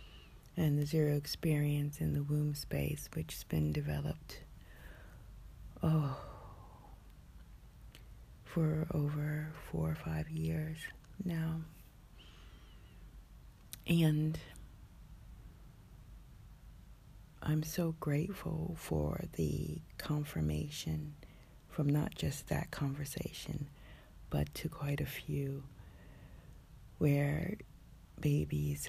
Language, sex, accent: English, female, American